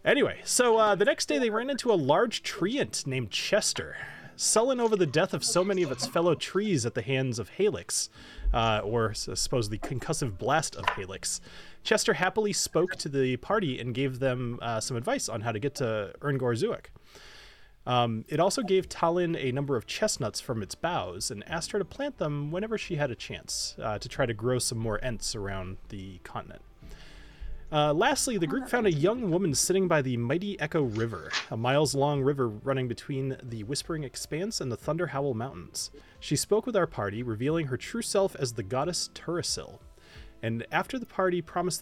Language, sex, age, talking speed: English, male, 30-49, 195 wpm